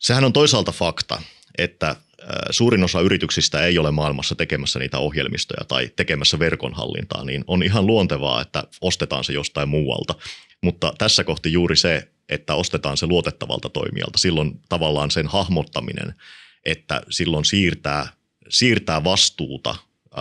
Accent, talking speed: native, 135 wpm